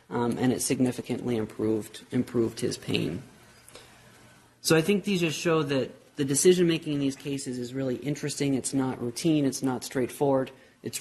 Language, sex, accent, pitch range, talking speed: English, male, American, 130-155 Hz, 165 wpm